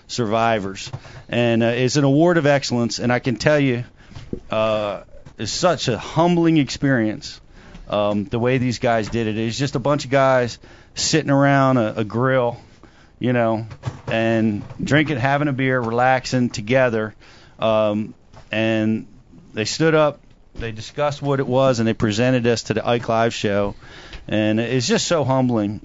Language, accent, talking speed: English, American, 165 wpm